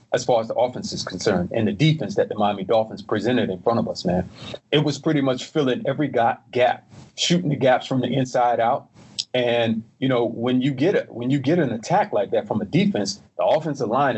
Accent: American